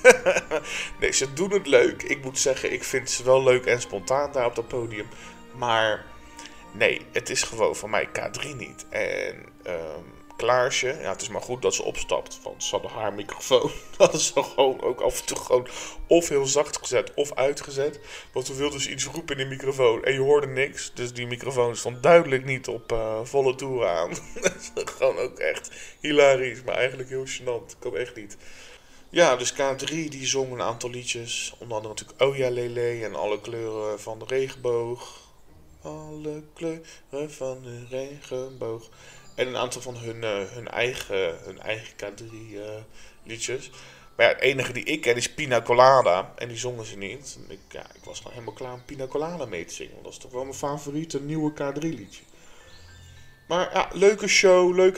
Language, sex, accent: Dutch, male, Dutch